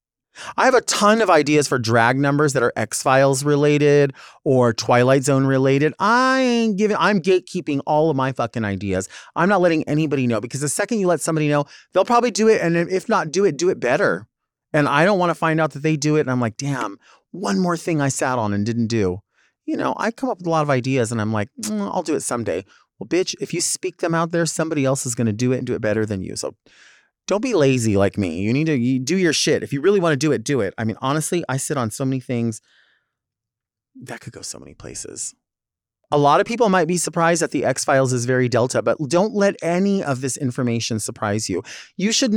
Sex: male